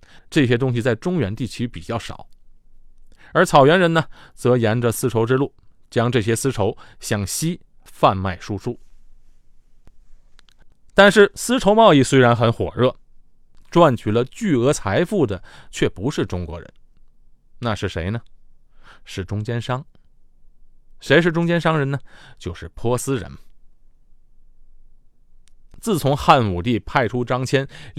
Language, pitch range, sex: Chinese, 100-145 Hz, male